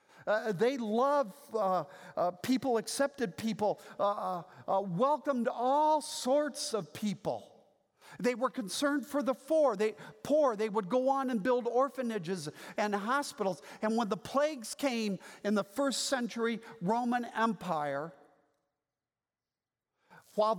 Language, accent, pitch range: English, American, 215-270 Hz